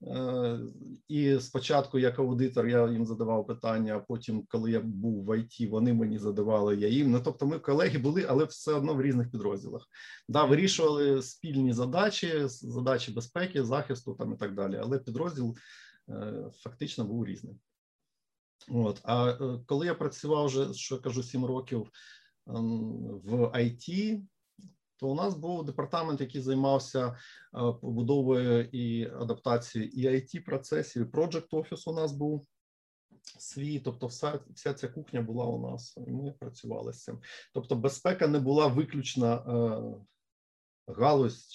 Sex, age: male, 50-69